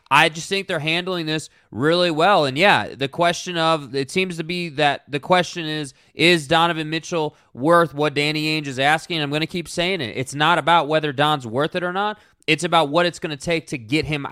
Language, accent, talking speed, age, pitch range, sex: English, American, 230 wpm, 20-39, 140-170 Hz, male